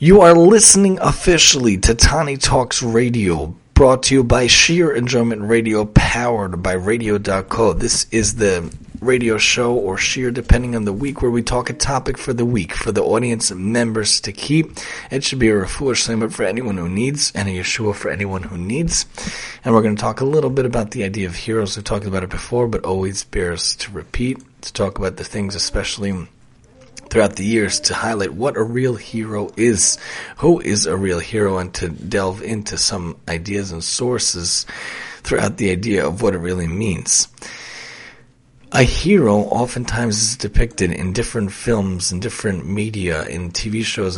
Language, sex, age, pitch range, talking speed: English, male, 30-49, 95-120 Hz, 180 wpm